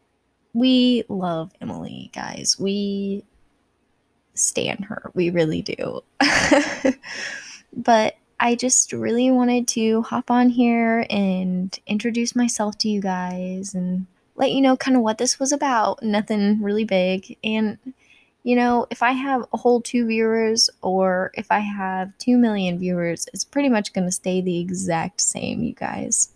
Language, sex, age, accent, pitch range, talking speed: English, female, 10-29, American, 190-245 Hz, 150 wpm